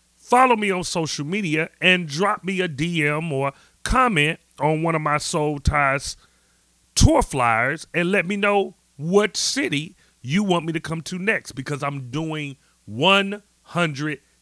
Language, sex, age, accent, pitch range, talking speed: English, male, 40-59, American, 120-175 Hz, 155 wpm